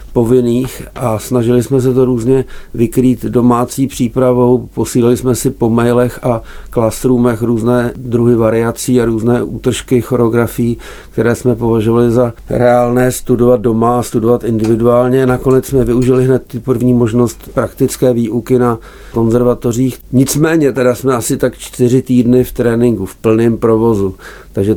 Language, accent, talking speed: Czech, native, 135 wpm